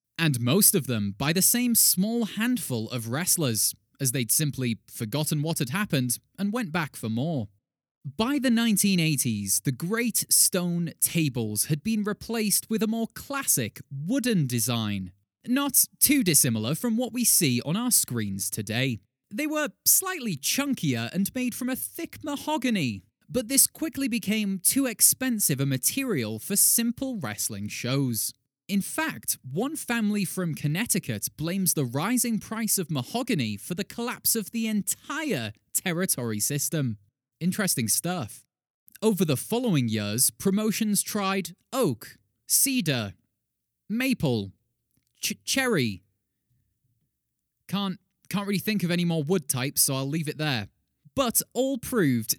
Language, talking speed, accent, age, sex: English, 140 wpm, British, 20-39, male